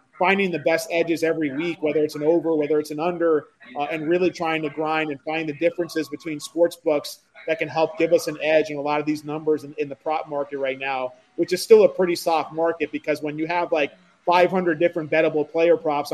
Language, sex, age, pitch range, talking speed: English, male, 30-49, 155-185 Hz, 245 wpm